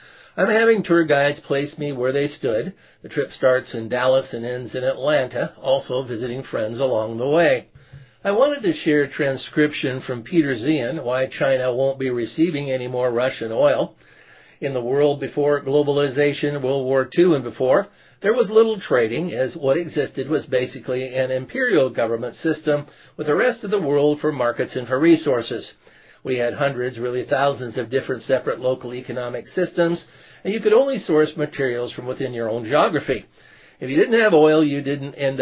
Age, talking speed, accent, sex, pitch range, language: 50-69, 180 wpm, American, male, 125-150 Hz, English